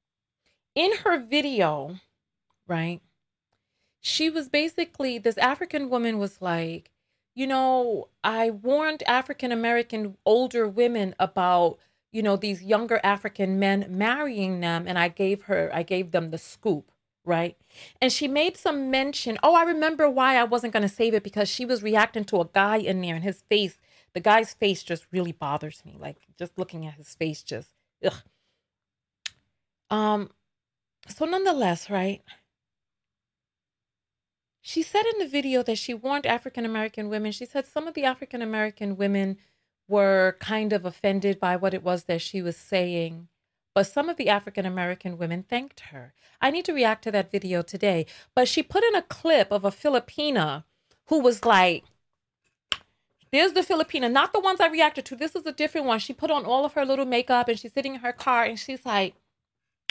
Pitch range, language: 190-270 Hz, English